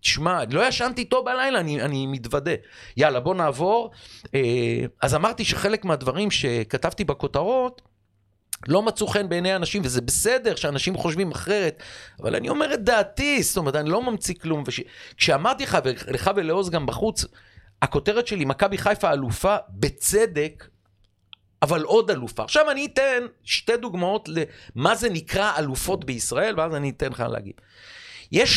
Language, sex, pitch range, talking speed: Hebrew, male, 140-225 Hz, 145 wpm